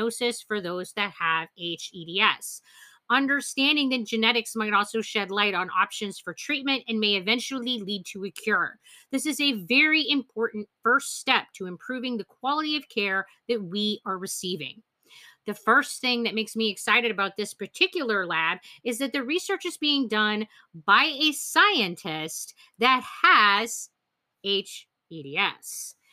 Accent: American